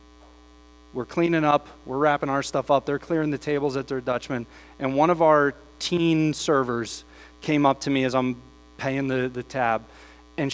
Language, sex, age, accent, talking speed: English, male, 30-49, American, 180 wpm